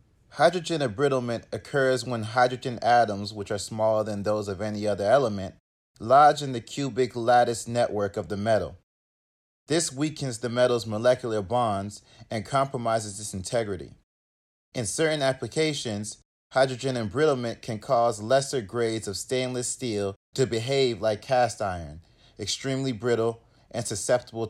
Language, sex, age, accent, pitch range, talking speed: English, male, 30-49, American, 105-130 Hz, 135 wpm